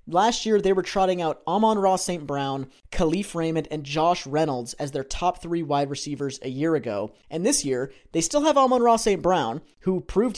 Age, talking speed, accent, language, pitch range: 30-49, 210 wpm, American, English, 150-195 Hz